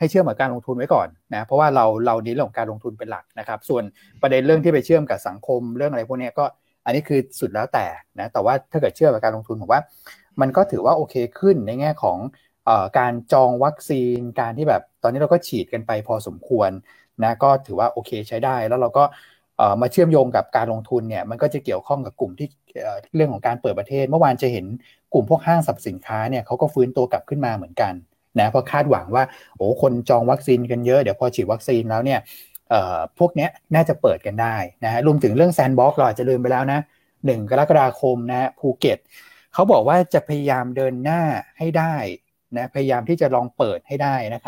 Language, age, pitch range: Thai, 20-39, 120-150 Hz